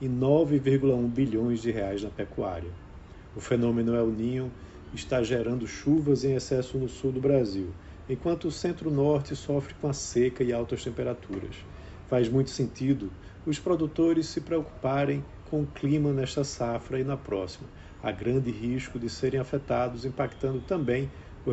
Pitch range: 110-140 Hz